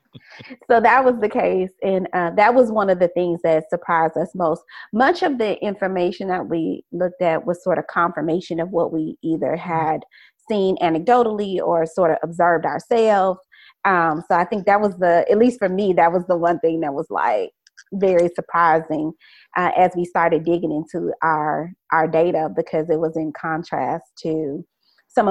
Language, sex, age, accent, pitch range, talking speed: English, female, 30-49, American, 165-190 Hz, 185 wpm